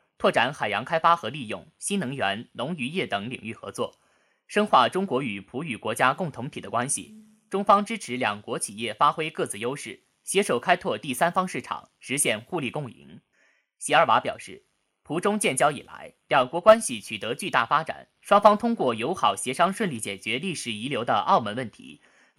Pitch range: 125-200 Hz